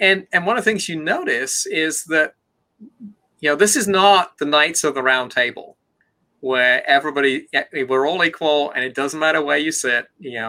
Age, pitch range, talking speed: 30-49, 140-220 Hz, 195 wpm